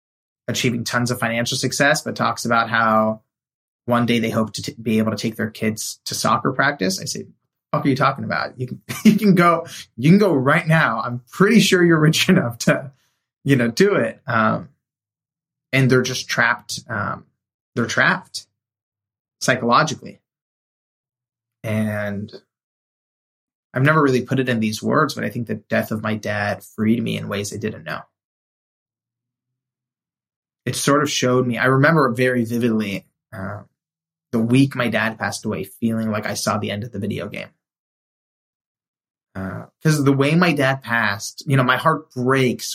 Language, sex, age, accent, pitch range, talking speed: English, male, 20-39, American, 110-135 Hz, 175 wpm